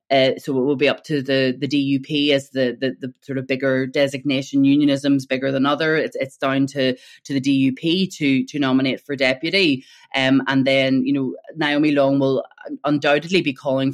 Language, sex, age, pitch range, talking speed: English, female, 20-39, 135-145 Hz, 200 wpm